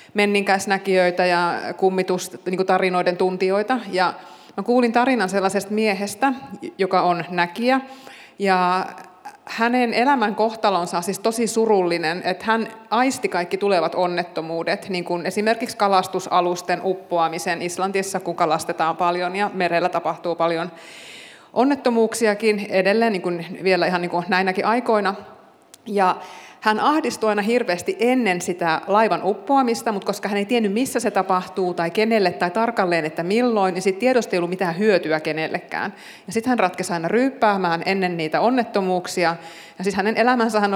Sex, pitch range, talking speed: female, 180-220 Hz, 135 wpm